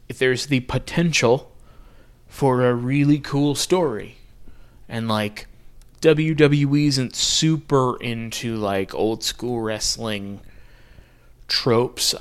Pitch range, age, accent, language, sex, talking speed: 105-135 Hz, 20-39, American, English, male, 90 wpm